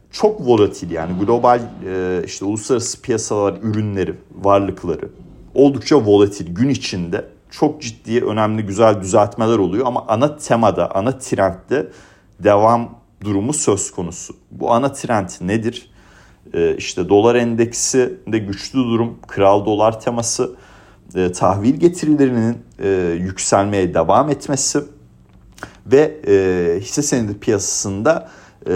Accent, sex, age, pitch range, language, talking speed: native, male, 40-59, 100-140 Hz, Turkish, 100 wpm